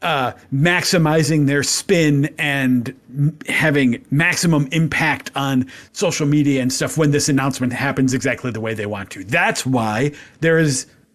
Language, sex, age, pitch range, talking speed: English, male, 40-59, 135-175 Hz, 145 wpm